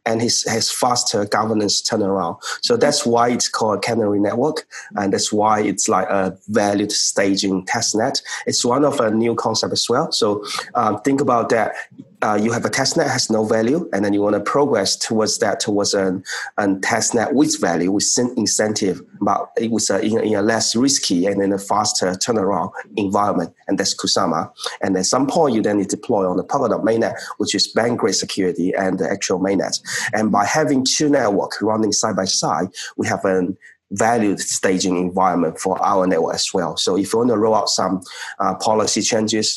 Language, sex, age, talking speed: English, male, 30-49, 195 wpm